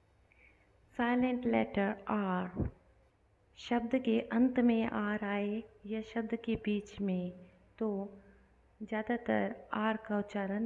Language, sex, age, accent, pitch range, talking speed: Hindi, female, 20-39, native, 185-220 Hz, 105 wpm